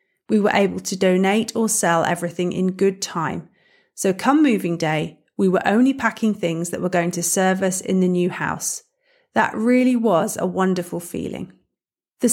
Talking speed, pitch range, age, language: 180 wpm, 180-250 Hz, 40-59, English